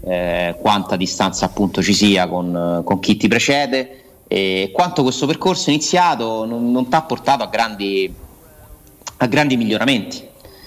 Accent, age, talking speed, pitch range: native, 30-49, 145 wpm, 100-145 Hz